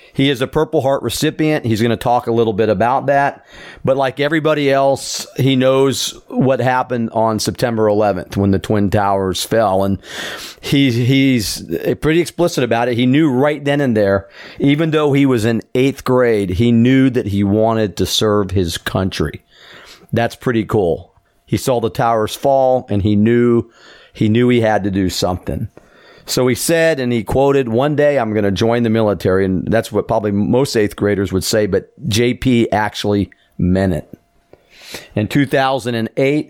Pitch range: 100-130 Hz